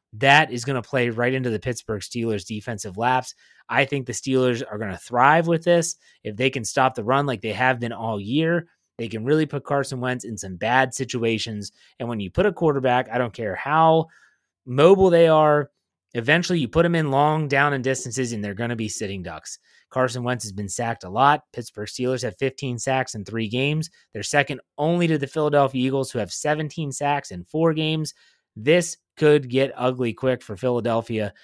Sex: male